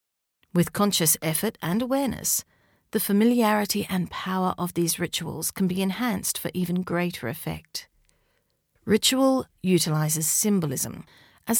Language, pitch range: English, 175-225 Hz